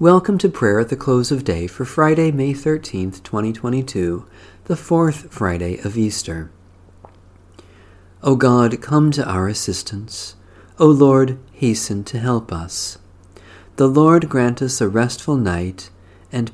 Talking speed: 140 wpm